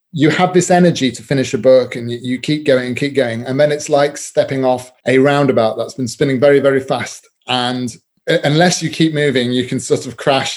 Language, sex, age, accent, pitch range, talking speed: English, male, 30-49, British, 125-150 Hz, 220 wpm